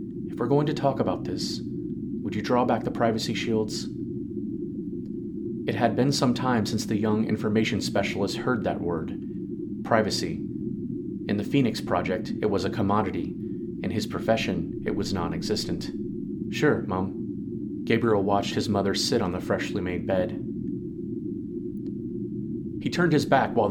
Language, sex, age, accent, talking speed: English, male, 30-49, American, 150 wpm